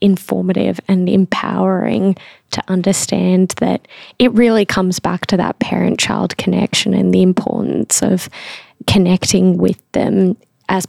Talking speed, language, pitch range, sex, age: 120 wpm, English, 185-205 Hz, female, 10-29